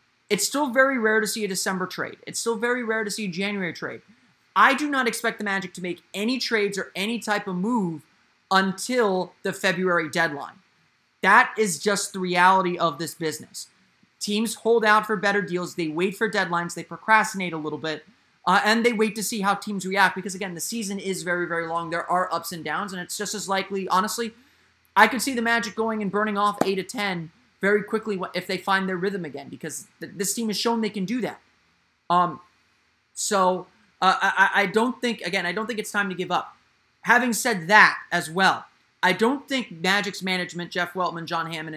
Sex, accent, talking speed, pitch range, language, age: male, American, 215 wpm, 175-220 Hz, English, 30-49